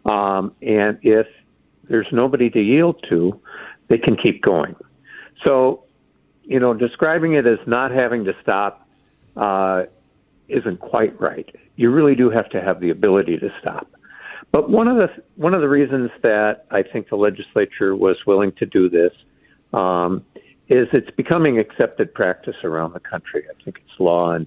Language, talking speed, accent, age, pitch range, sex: English, 165 wpm, American, 60-79, 95-135 Hz, male